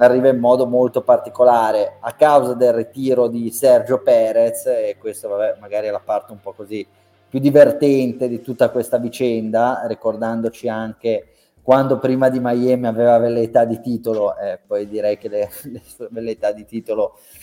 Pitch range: 115-130 Hz